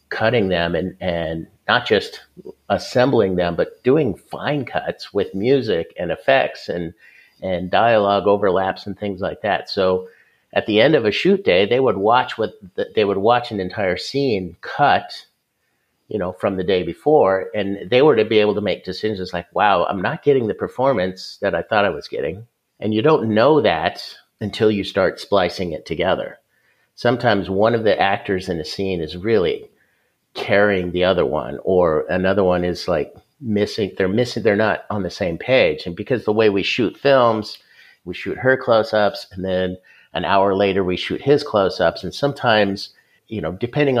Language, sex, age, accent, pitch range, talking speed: English, male, 50-69, American, 95-120 Hz, 185 wpm